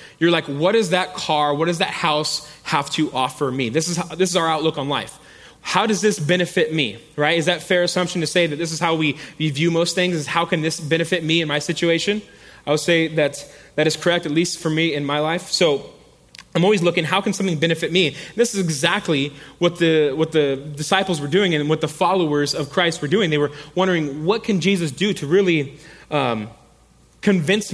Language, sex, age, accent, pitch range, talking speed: English, male, 20-39, American, 150-180 Hz, 230 wpm